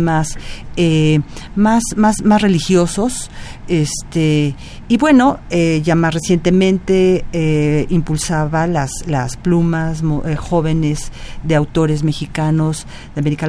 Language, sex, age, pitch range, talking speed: Spanish, female, 40-59, 145-190 Hz, 115 wpm